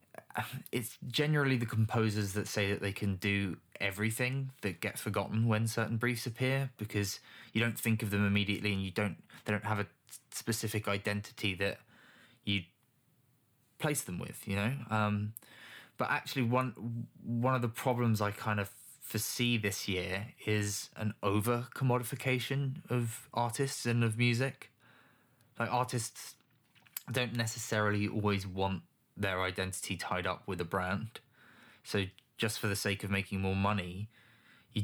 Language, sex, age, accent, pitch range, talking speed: English, male, 20-39, British, 100-120 Hz, 150 wpm